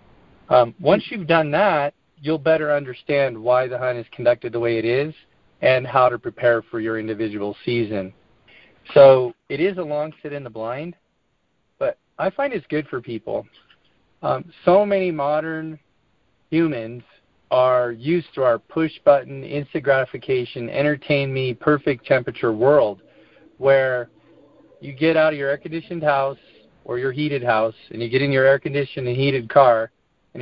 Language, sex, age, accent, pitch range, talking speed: English, male, 40-59, American, 120-150 Hz, 155 wpm